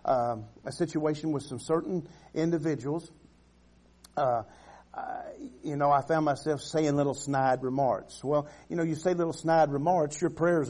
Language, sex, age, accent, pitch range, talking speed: English, male, 50-69, American, 140-175 Hz, 155 wpm